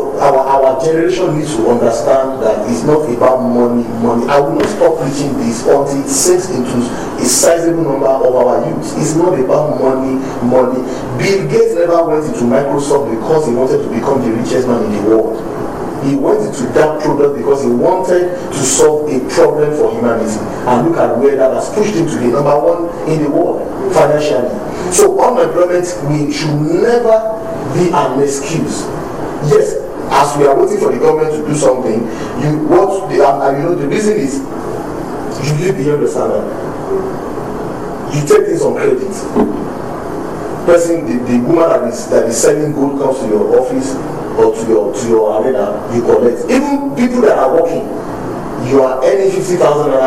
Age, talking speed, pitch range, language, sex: 40-59, 180 wpm, 130-185 Hz, English, male